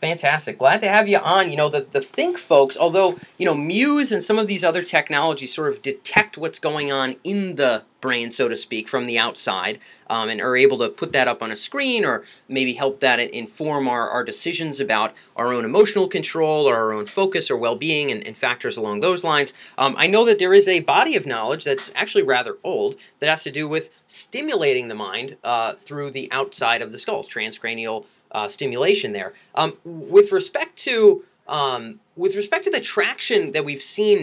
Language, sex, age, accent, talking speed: English, male, 30-49, American, 210 wpm